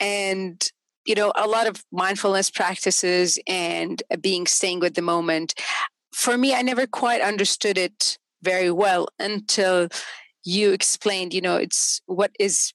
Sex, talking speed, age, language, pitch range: female, 145 wpm, 40-59, Arabic, 185-250 Hz